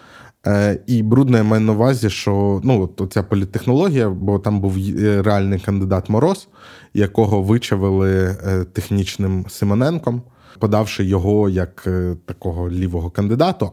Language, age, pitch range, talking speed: Ukrainian, 20-39, 95-115 Hz, 115 wpm